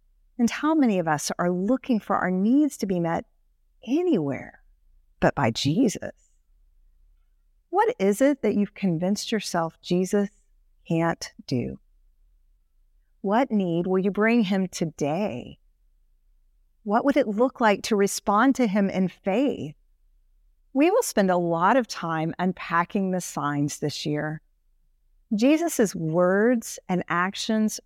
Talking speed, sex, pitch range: 130 wpm, female, 160-235 Hz